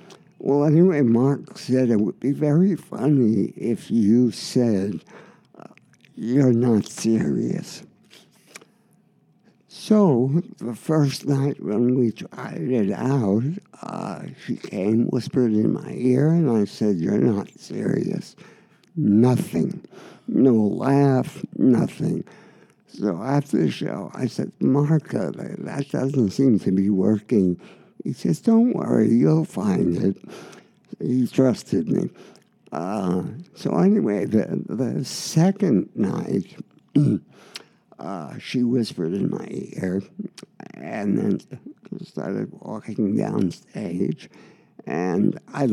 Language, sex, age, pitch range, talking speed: English, male, 60-79, 115-190 Hz, 115 wpm